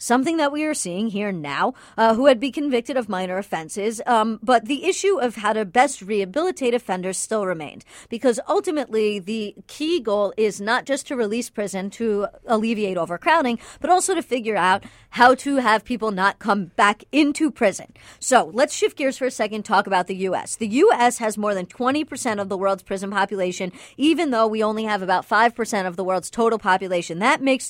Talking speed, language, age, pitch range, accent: 195 wpm, English, 40-59, 195-255 Hz, American